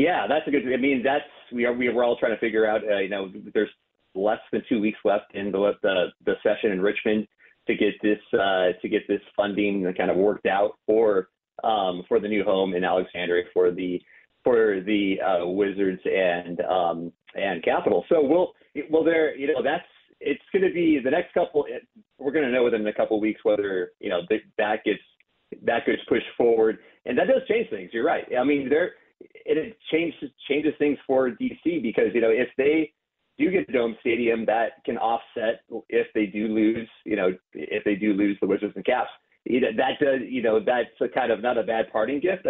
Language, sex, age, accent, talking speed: English, male, 30-49, American, 210 wpm